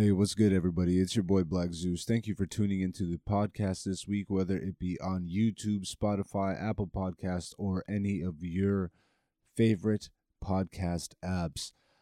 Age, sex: 20-39, male